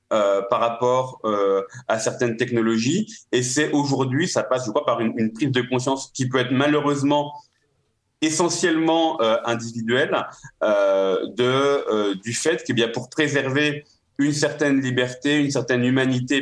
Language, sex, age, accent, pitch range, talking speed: French, male, 30-49, French, 115-145 Hz, 150 wpm